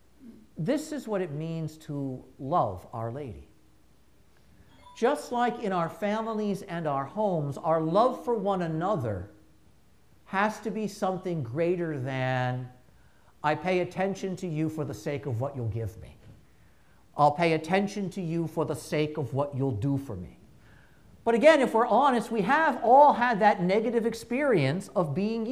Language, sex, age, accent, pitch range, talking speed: English, male, 50-69, American, 155-225 Hz, 160 wpm